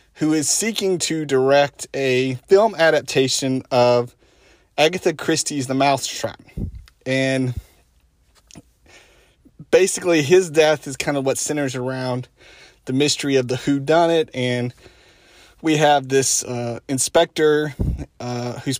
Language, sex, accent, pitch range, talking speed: English, male, American, 120-145 Hz, 120 wpm